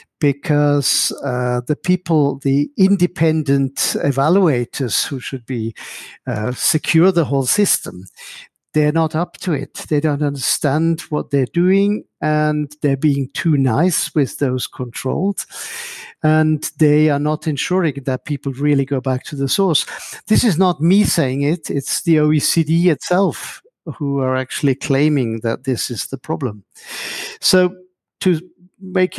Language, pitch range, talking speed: English, 135-165 Hz, 140 wpm